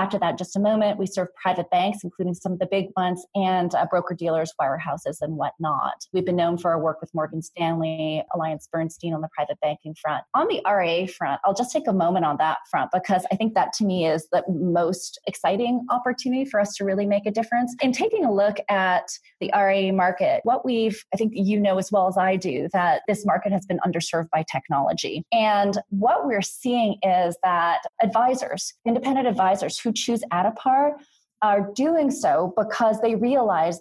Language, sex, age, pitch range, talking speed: English, female, 20-39, 180-215 Hz, 200 wpm